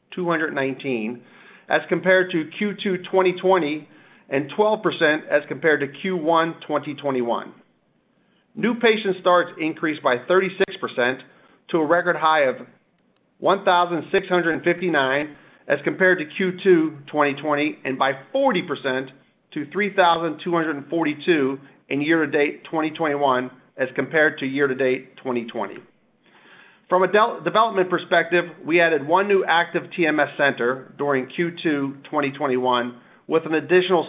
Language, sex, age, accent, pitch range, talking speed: English, male, 40-59, American, 140-180 Hz, 105 wpm